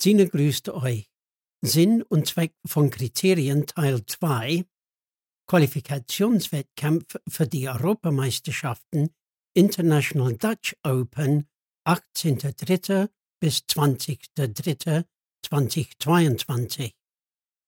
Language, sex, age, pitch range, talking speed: German, male, 60-79, 135-175 Hz, 60 wpm